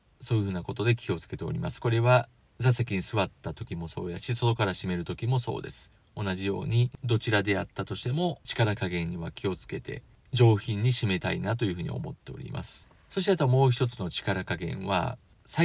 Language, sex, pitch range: Japanese, male, 95-130 Hz